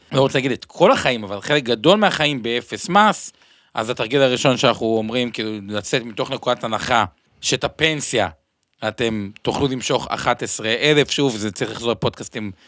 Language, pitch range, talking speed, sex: Hebrew, 110-145 Hz, 160 wpm, male